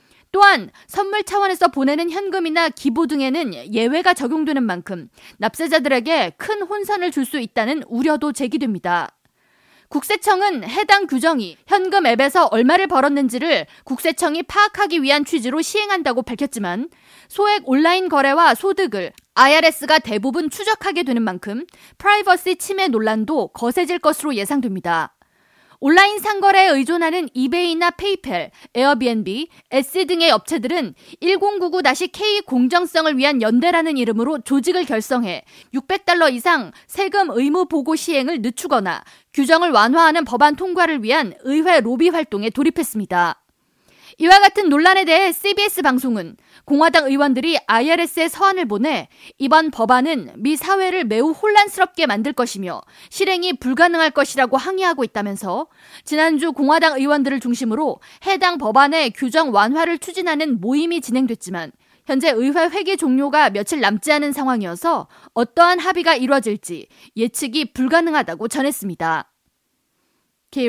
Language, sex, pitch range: Korean, female, 255-350 Hz